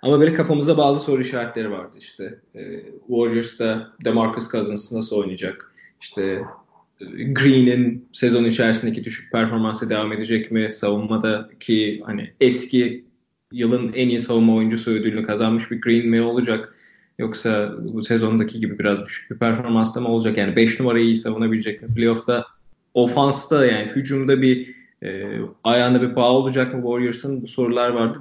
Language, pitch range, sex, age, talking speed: Turkish, 110-130 Hz, male, 20-39, 145 wpm